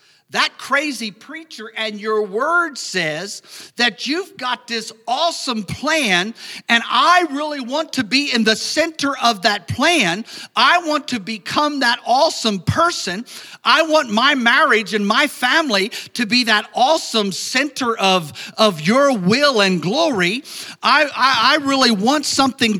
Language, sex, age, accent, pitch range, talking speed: English, male, 50-69, American, 195-275 Hz, 145 wpm